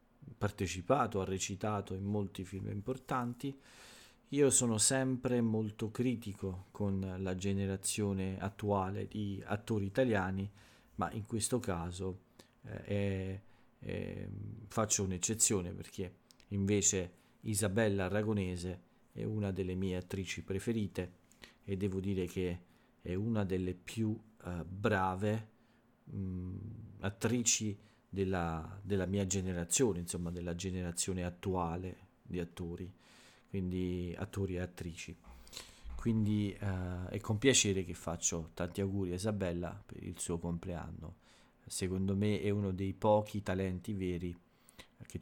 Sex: male